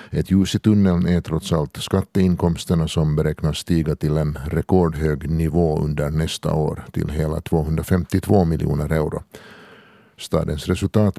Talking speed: 130 wpm